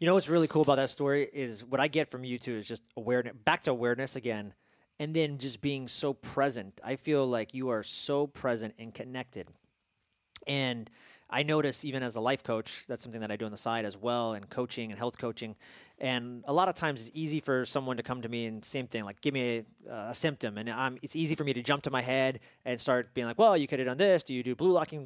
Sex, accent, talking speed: male, American, 260 wpm